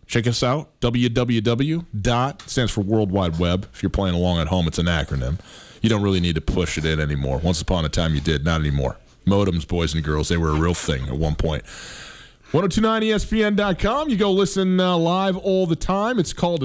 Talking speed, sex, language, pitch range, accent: 210 wpm, male, English, 100-145 Hz, American